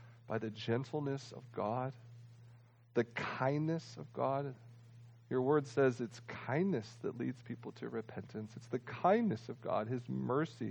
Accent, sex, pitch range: American, male, 115-140 Hz